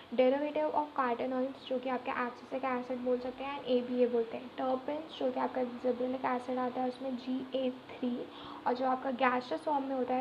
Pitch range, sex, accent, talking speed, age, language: 250-275 Hz, female, native, 200 wpm, 10-29, Hindi